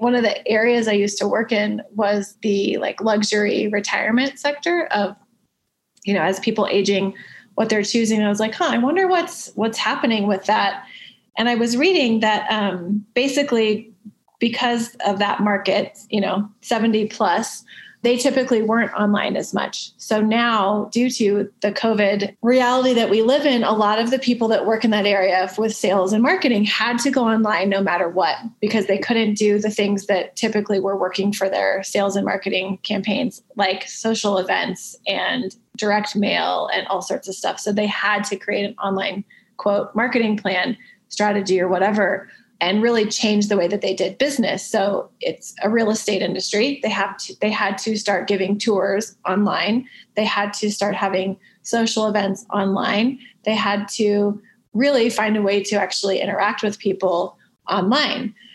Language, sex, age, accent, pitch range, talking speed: English, female, 20-39, American, 200-230 Hz, 180 wpm